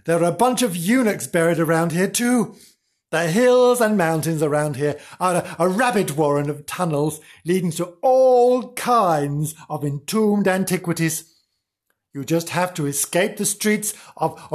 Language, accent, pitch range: English, British, 150-205 Hz